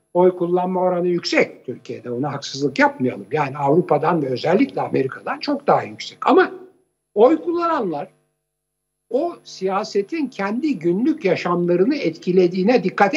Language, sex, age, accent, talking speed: Turkish, male, 60-79, native, 120 wpm